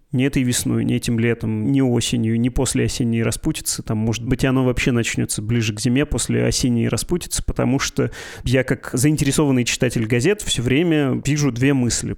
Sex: male